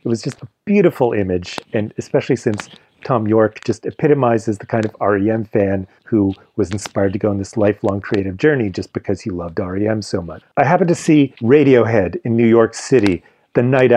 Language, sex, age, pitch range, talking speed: English, male, 40-59, 100-125 Hz, 200 wpm